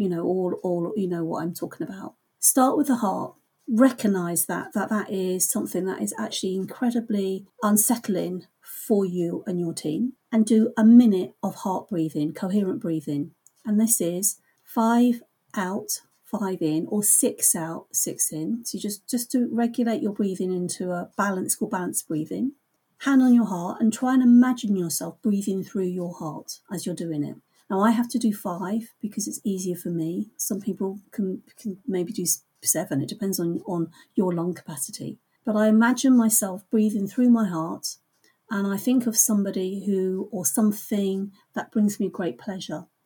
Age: 40-59